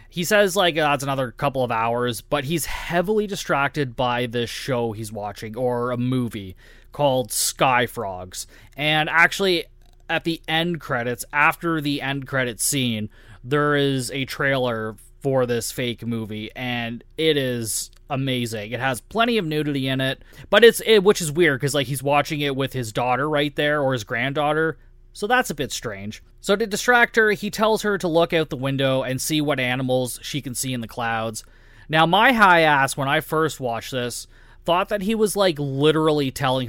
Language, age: English, 20-39